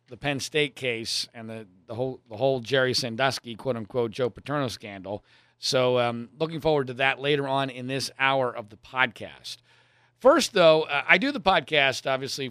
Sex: male